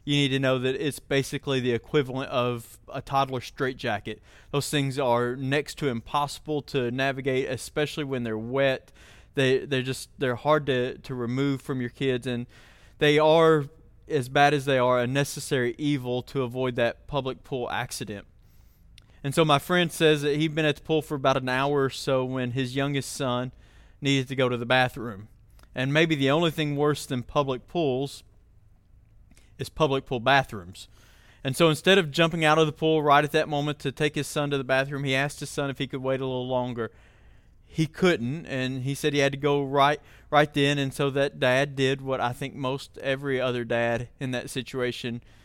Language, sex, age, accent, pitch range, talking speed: English, male, 20-39, American, 120-145 Hz, 195 wpm